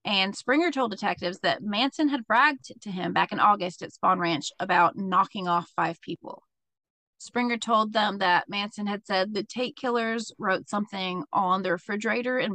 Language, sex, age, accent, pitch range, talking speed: English, female, 30-49, American, 185-235 Hz, 175 wpm